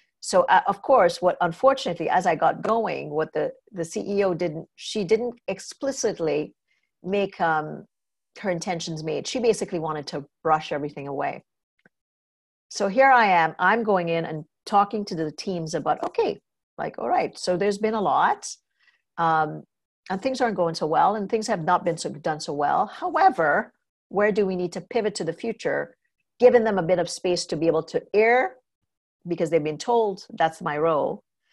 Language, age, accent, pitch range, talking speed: English, 50-69, American, 160-210 Hz, 185 wpm